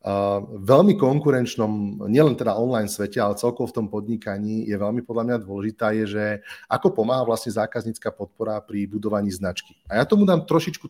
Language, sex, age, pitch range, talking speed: Slovak, male, 30-49, 100-125 Hz, 175 wpm